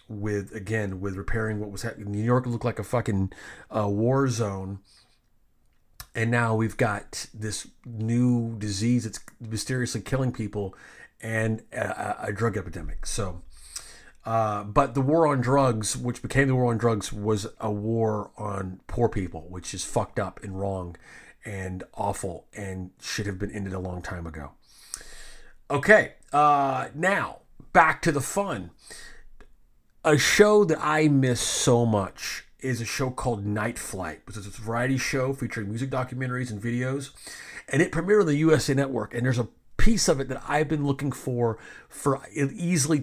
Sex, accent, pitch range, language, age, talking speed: male, American, 105-130 Hz, English, 30-49, 165 wpm